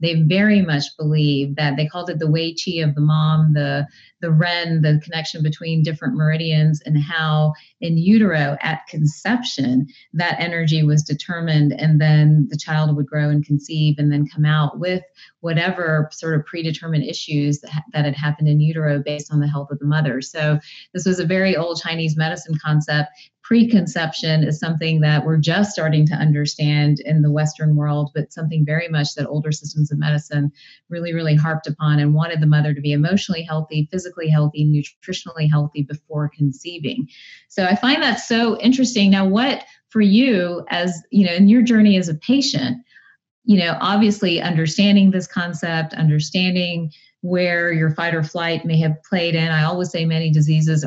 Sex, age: female, 30-49